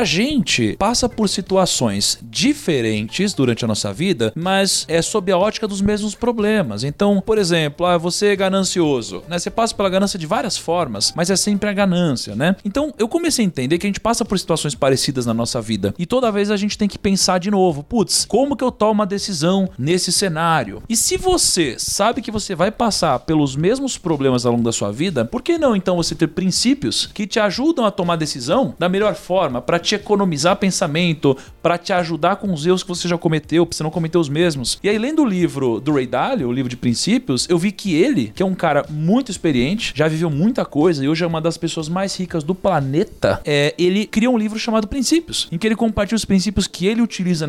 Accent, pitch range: Brazilian, 165-215 Hz